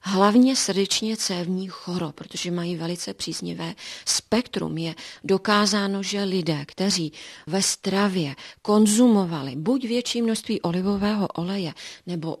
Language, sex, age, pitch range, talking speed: Czech, female, 40-59, 170-200 Hz, 110 wpm